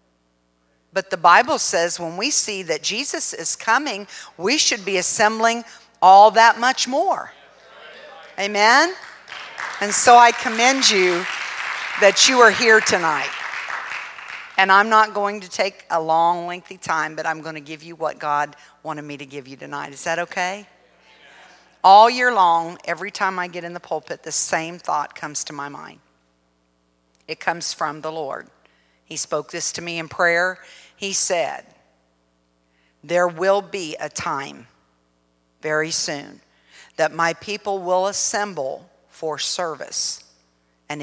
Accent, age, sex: American, 50-69, female